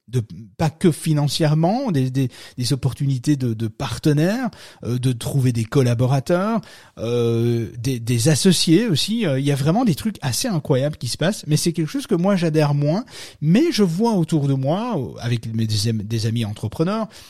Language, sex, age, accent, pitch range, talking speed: French, male, 30-49, French, 120-165 Hz, 180 wpm